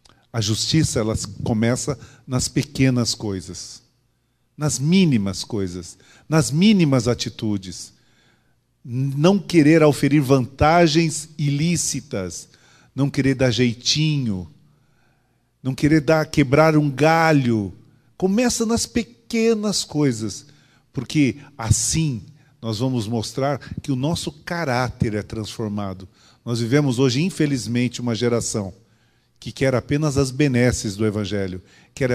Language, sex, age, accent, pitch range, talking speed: Portuguese, male, 40-59, Brazilian, 115-150 Hz, 105 wpm